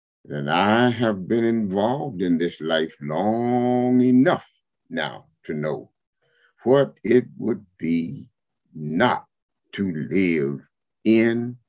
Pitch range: 80-135 Hz